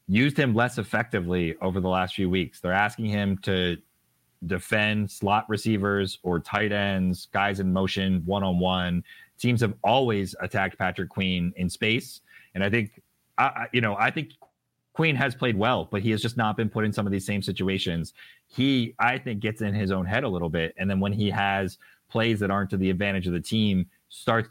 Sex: male